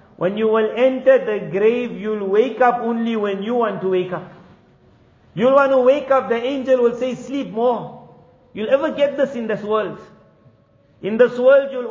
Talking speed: 195 wpm